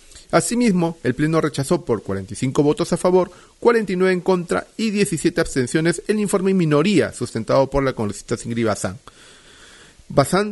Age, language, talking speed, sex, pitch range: 40-59, Spanish, 150 wpm, male, 130-185 Hz